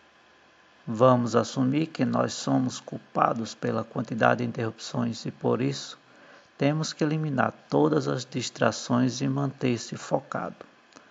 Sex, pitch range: male, 110-130 Hz